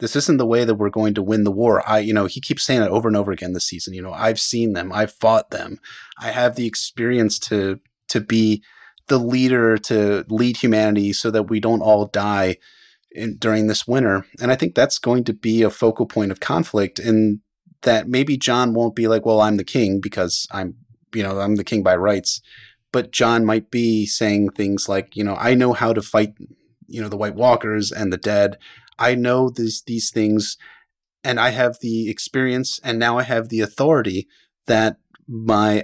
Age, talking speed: 30-49, 210 wpm